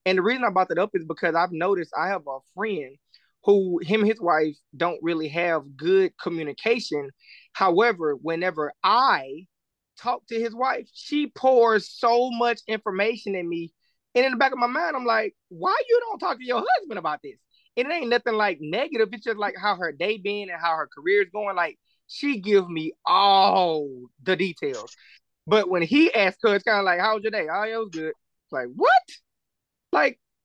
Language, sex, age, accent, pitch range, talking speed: English, male, 20-39, American, 165-230 Hz, 205 wpm